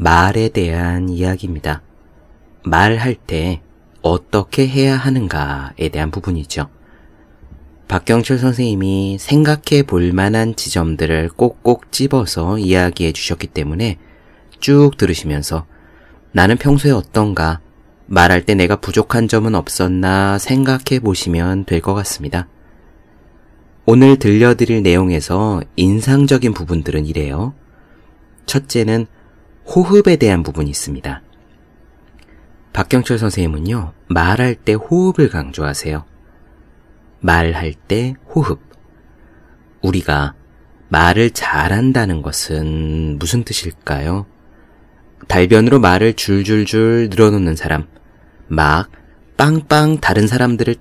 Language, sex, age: Korean, male, 30-49